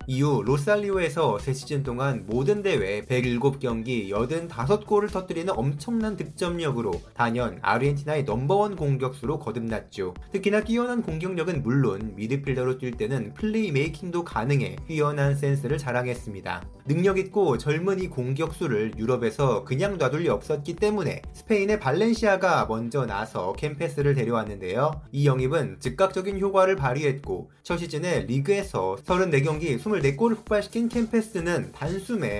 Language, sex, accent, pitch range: Korean, male, native, 125-190 Hz